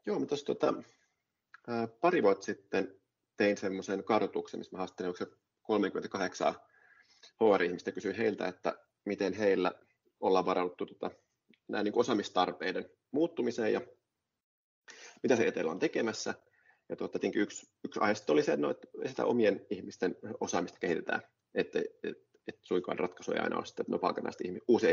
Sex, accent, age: male, native, 30-49